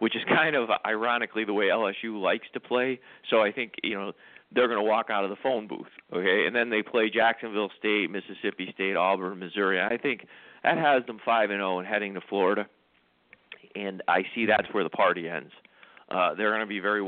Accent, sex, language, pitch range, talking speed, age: American, male, English, 95-110 Hz, 215 wpm, 40-59